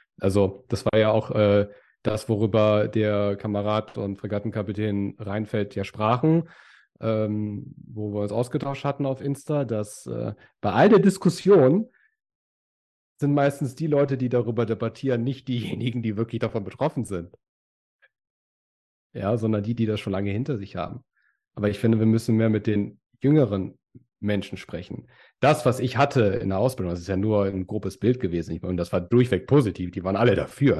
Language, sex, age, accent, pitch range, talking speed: German, male, 40-59, German, 105-130 Hz, 170 wpm